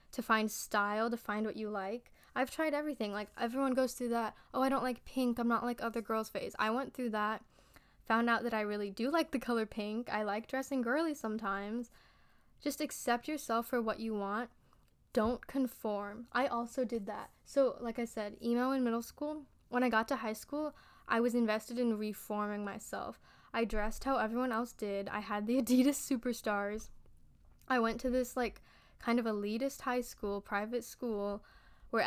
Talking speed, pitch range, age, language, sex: 195 wpm, 215-260 Hz, 10-29, English, female